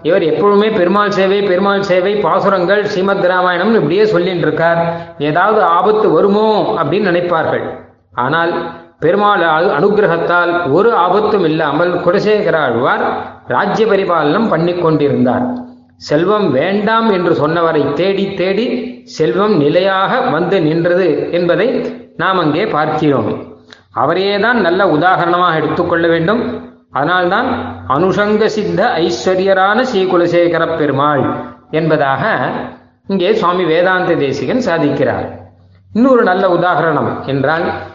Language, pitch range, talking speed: Tamil, 150-200 Hz, 100 wpm